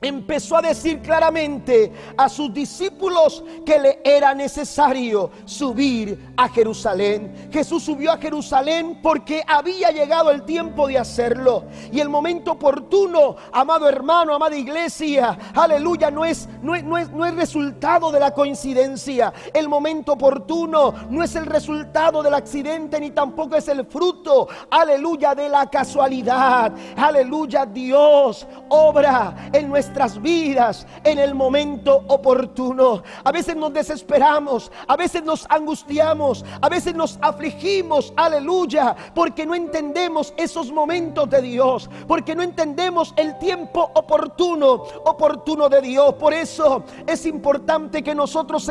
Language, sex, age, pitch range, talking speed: Spanish, male, 40-59, 275-325 Hz, 135 wpm